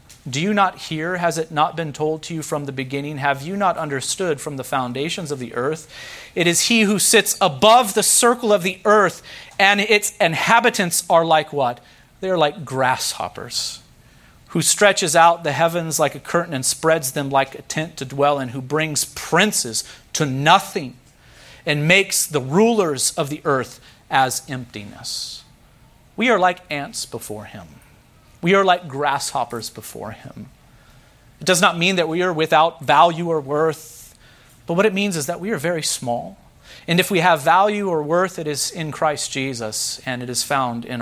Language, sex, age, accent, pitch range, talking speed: English, male, 40-59, American, 125-170 Hz, 185 wpm